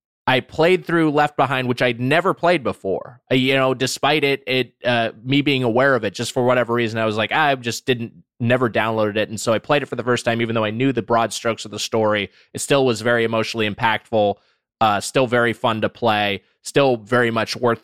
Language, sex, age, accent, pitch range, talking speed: English, male, 20-39, American, 115-140 Hz, 235 wpm